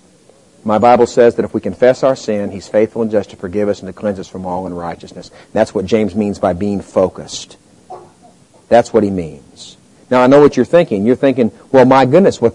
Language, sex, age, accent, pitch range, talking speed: English, male, 40-59, American, 110-155 Hz, 220 wpm